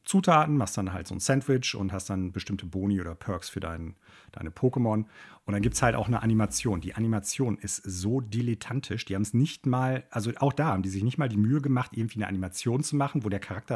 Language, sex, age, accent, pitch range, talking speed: German, male, 40-59, German, 105-155 Hz, 240 wpm